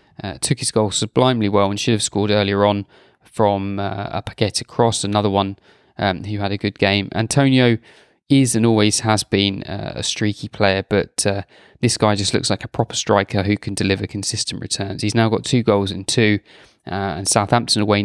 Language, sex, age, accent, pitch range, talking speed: English, male, 20-39, British, 100-115 Hz, 205 wpm